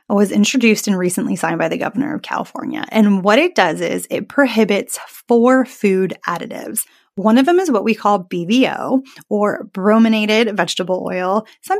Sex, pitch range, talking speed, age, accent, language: female, 185-255 Hz, 170 wpm, 20-39, American, English